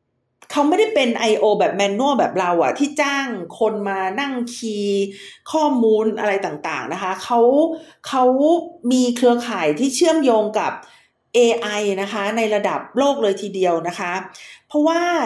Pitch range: 205-270 Hz